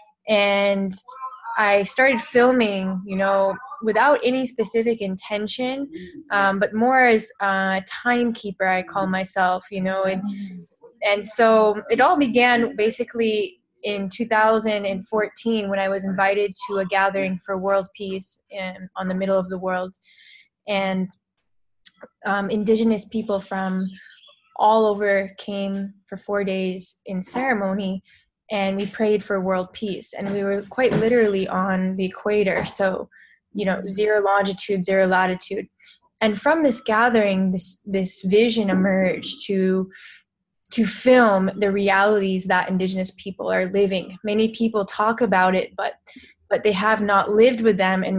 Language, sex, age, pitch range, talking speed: English, female, 20-39, 190-220 Hz, 140 wpm